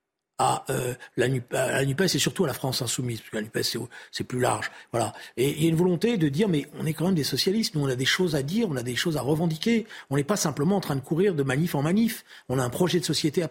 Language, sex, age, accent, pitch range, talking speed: French, male, 40-59, French, 135-185 Hz, 295 wpm